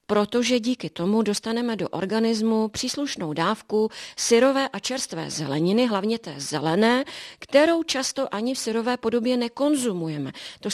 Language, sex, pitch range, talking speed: Czech, female, 185-230 Hz, 130 wpm